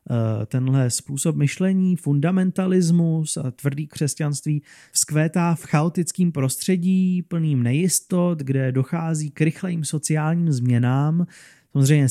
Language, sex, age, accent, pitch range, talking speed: Czech, male, 30-49, native, 130-165 Hz, 100 wpm